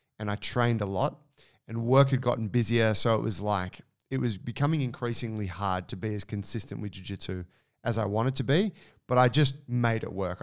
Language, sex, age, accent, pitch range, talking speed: English, male, 20-39, Australian, 105-130 Hz, 215 wpm